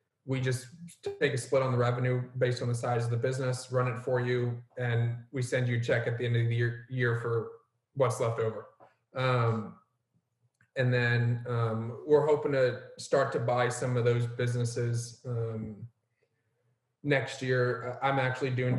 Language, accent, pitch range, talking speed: English, American, 115-130 Hz, 180 wpm